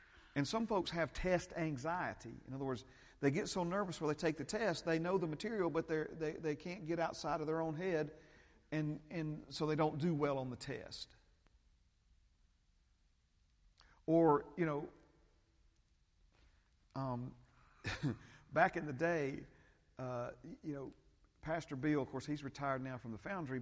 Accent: American